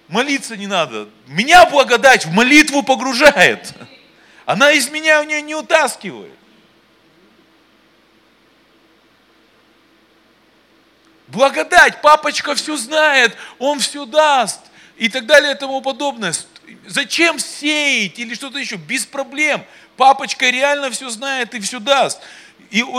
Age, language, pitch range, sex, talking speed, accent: 40-59, Russian, 225-290 Hz, male, 110 wpm, native